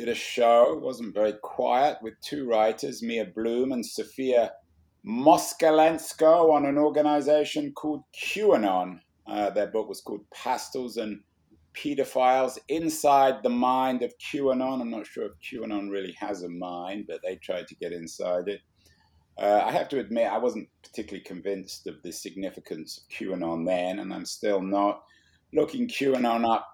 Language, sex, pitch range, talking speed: English, male, 95-125 Hz, 155 wpm